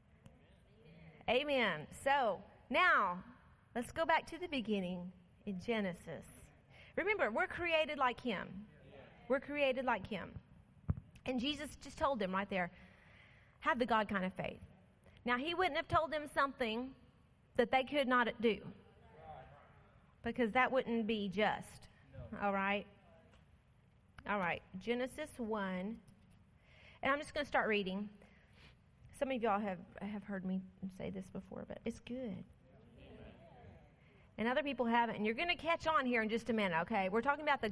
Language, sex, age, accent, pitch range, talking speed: English, female, 30-49, American, 200-260 Hz, 155 wpm